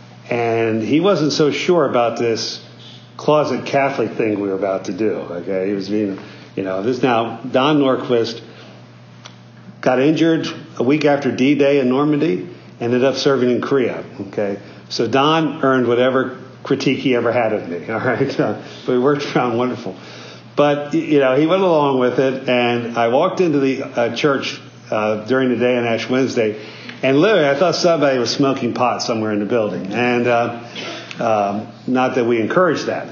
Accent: American